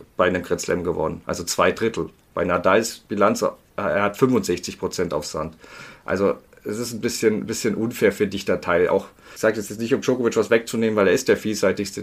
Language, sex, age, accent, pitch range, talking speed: German, male, 40-59, German, 100-115 Hz, 205 wpm